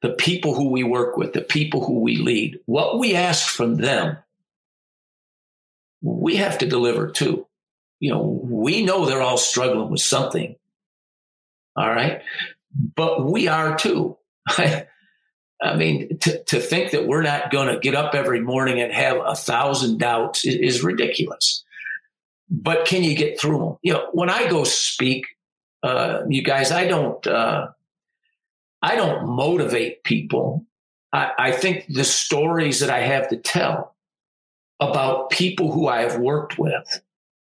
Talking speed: 155 wpm